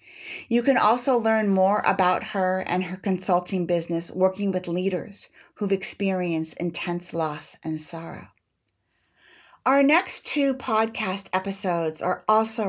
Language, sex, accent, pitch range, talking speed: English, female, American, 185-225 Hz, 130 wpm